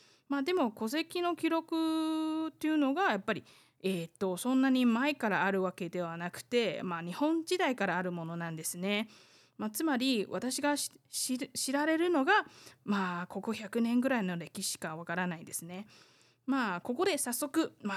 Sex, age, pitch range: female, 20-39, 190-275 Hz